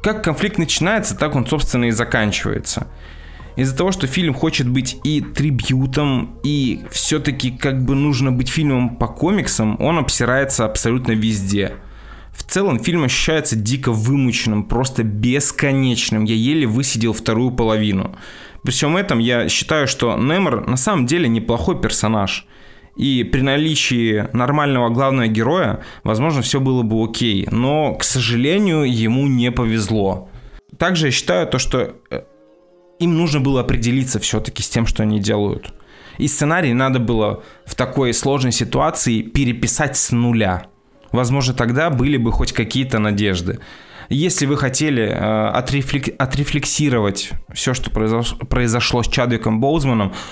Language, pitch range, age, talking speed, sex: Russian, 110-140 Hz, 20-39, 135 wpm, male